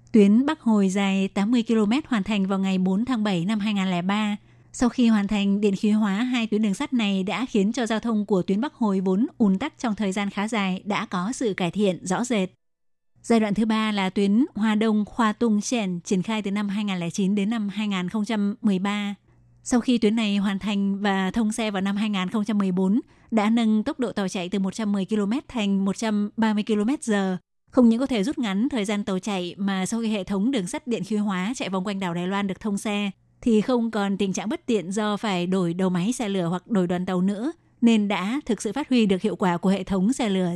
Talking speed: 230 wpm